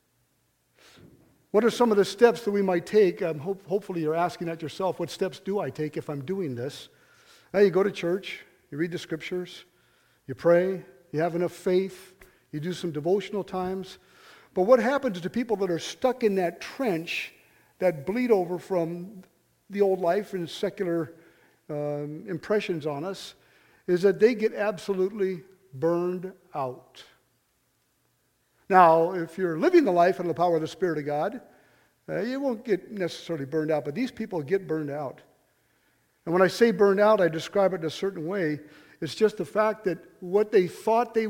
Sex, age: male, 50-69